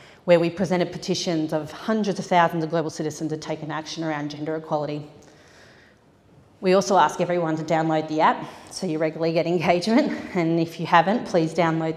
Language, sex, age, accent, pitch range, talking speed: English, female, 30-49, Australian, 155-175 Hz, 180 wpm